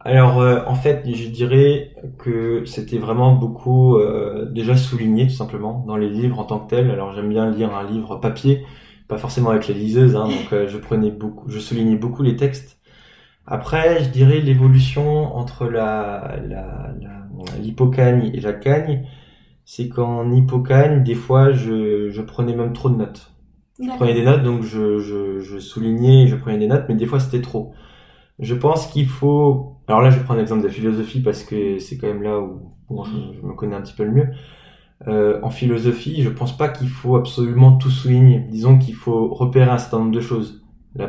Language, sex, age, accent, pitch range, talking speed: French, male, 20-39, French, 110-130 Hz, 200 wpm